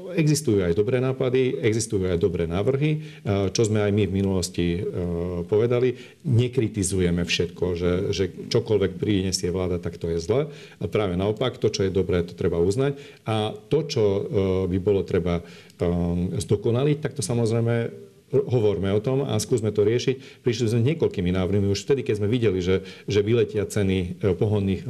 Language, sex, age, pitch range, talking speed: Slovak, male, 40-59, 95-130 Hz, 160 wpm